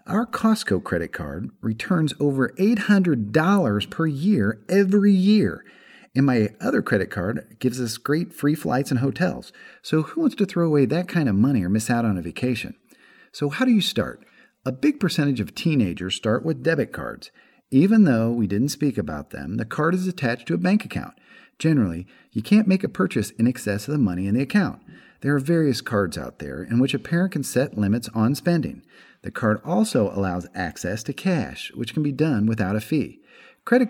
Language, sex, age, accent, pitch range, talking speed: English, male, 50-69, American, 110-185 Hz, 200 wpm